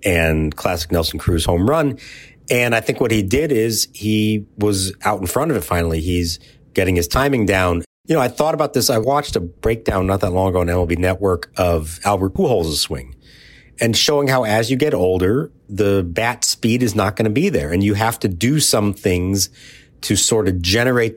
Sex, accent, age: male, American, 40-59